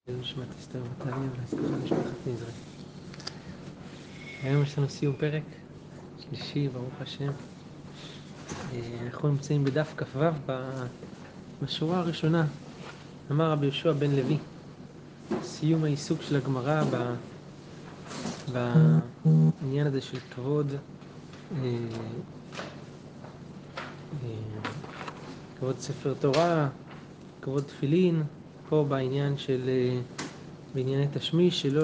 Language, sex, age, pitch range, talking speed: Hebrew, male, 20-39, 135-165 Hz, 85 wpm